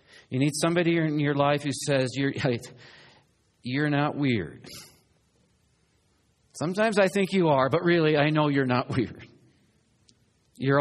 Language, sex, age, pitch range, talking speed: English, male, 50-69, 100-140 Hz, 140 wpm